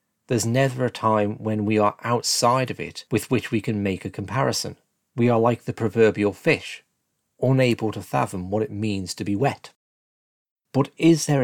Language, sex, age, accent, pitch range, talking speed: English, male, 40-59, British, 100-125 Hz, 185 wpm